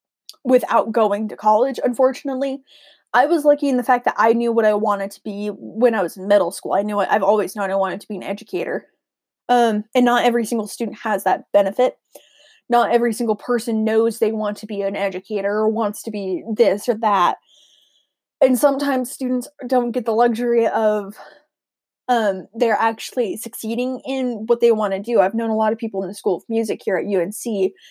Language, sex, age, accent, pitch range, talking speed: English, female, 10-29, American, 205-245 Hz, 205 wpm